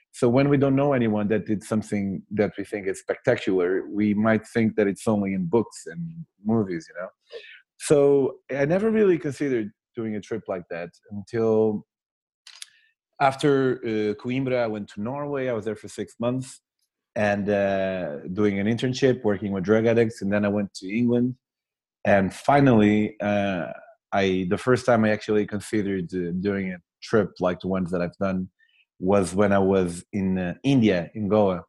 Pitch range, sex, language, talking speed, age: 100-130 Hz, male, English, 180 wpm, 30-49